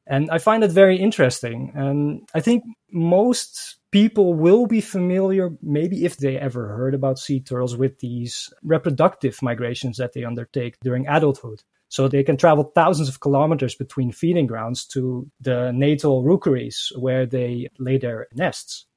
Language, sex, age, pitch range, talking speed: English, male, 20-39, 125-165 Hz, 160 wpm